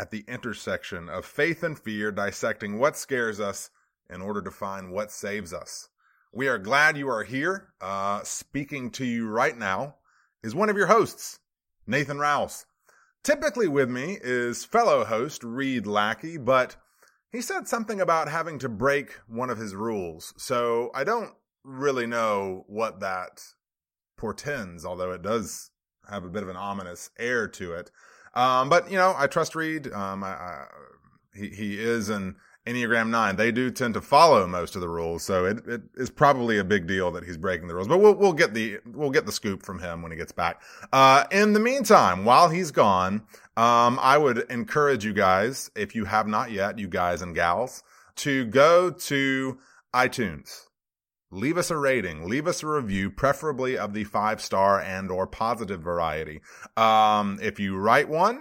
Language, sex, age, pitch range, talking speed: English, male, 30-49, 100-140 Hz, 185 wpm